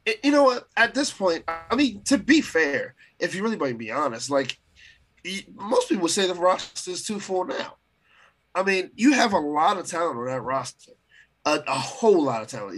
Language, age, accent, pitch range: English, 20-39, American, 135-185 Hz